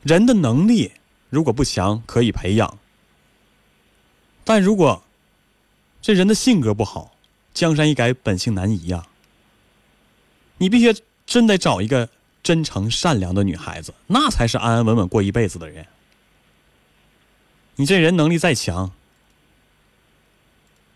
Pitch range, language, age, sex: 95-140 Hz, Chinese, 30-49, male